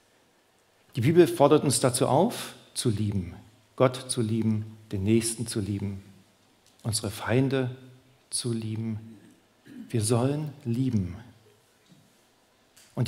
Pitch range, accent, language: 110-140 Hz, German, German